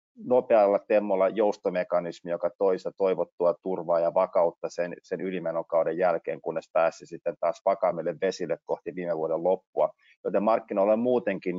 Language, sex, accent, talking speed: Finnish, male, native, 140 wpm